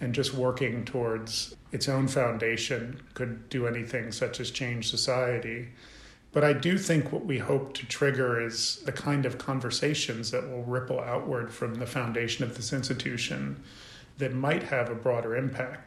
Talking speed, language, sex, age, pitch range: 165 wpm, English, male, 40-59, 120-150 Hz